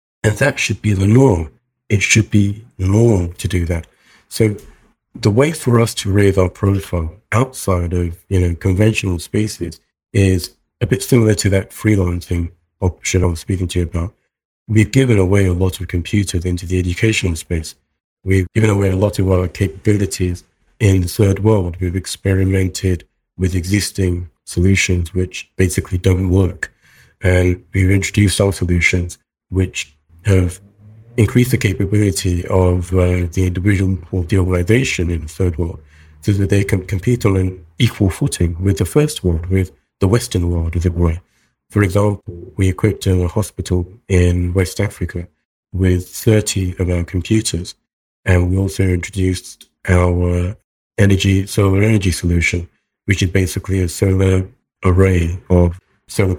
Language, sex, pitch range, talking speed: English, male, 90-100 Hz, 155 wpm